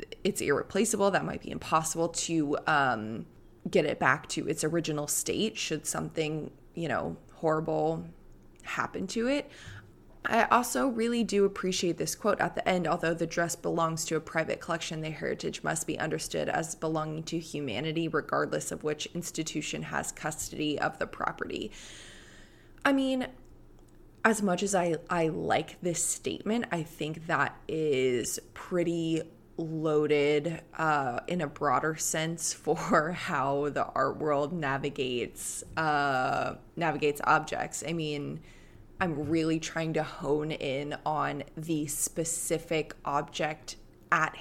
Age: 20-39